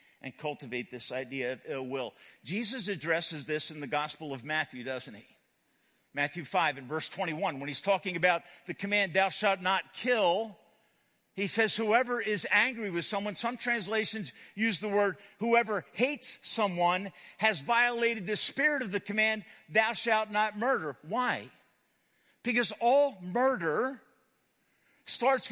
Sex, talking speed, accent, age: male, 150 wpm, American, 50-69